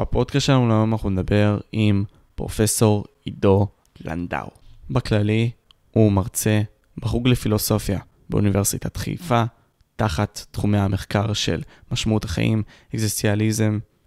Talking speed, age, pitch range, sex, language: 100 wpm, 20-39, 100-120 Hz, male, Hebrew